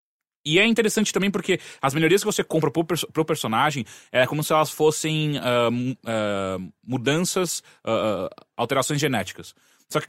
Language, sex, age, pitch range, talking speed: English, male, 20-39, 115-155 Hz, 135 wpm